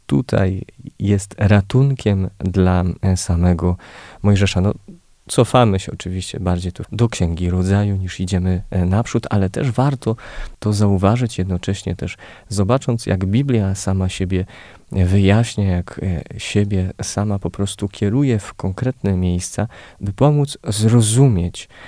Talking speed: 120 wpm